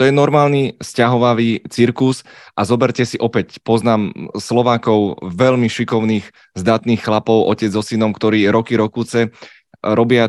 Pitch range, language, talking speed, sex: 110-120 Hz, Czech, 130 wpm, male